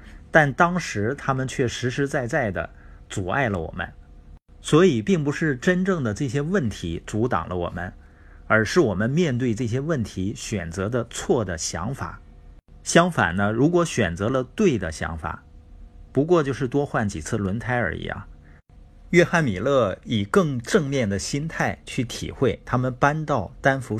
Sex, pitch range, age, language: male, 85-135 Hz, 50-69, Chinese